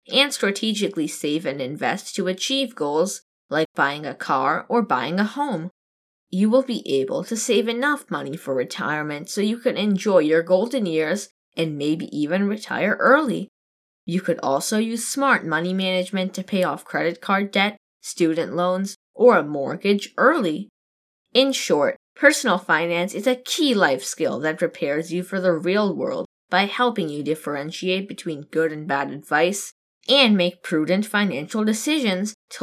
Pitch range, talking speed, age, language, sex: 165-230 Hz, 160 wpm, 10-29, English, female